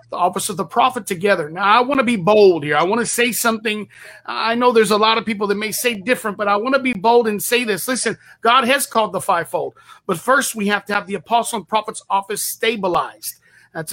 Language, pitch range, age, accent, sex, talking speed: English, 195-235 Hz, 40-59, American, male, 245 wpm